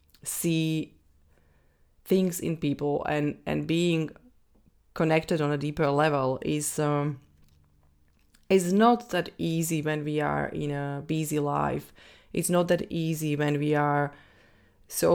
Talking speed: 130 wpm